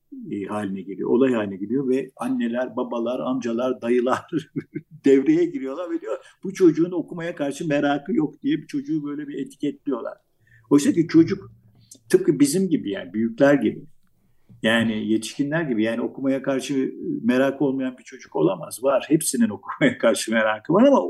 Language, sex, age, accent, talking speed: Turkish, male, 50-69, native, 150 wpm